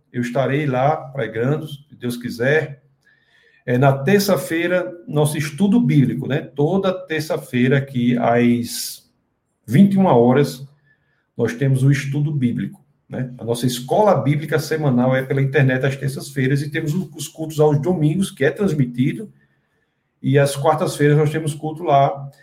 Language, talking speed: Portuguese, 135 wpm